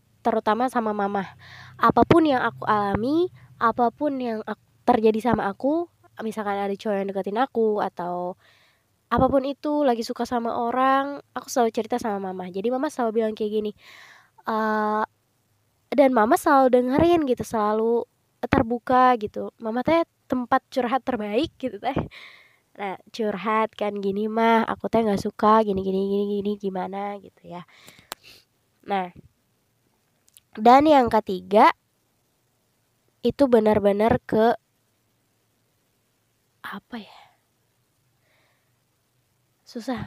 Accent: native